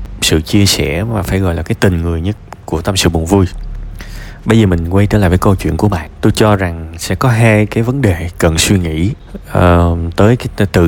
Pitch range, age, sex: 95-120 Hz, 20-39, male